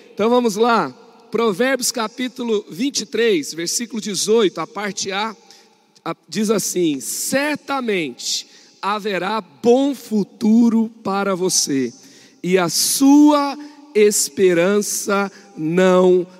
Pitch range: 195-245 Hz